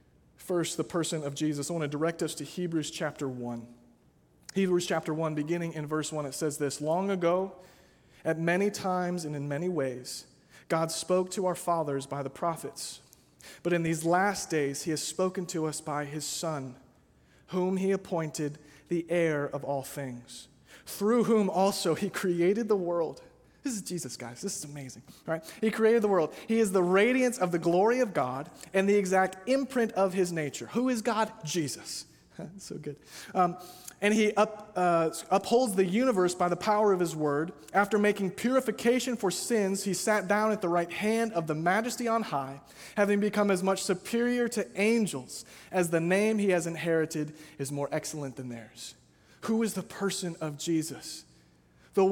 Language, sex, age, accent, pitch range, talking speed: English, male, 30-49, American, 150-200 Hz, 180 wpm